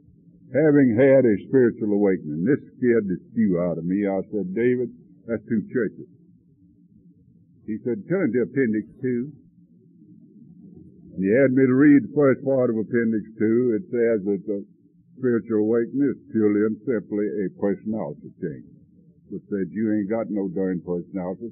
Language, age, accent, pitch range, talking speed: English, 60-79, American, 95-135 Hz, 160 wpm